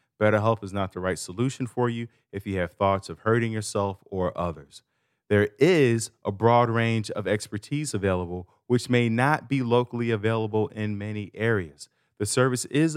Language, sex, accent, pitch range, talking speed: English, male, American, 105-145 Hz, 170 wpm